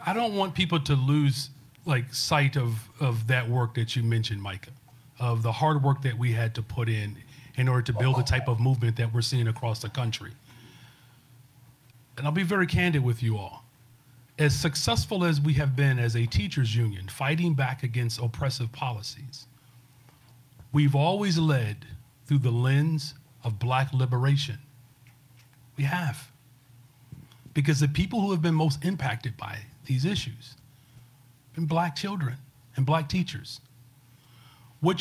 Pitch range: 120-145 Hz